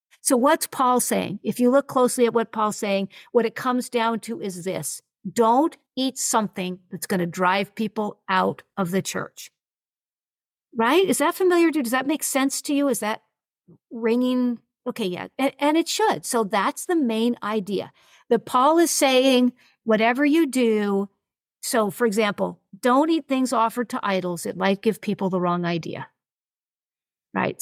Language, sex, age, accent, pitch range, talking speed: English, female, 50-69, American, 210-280 Hz, 175 wpm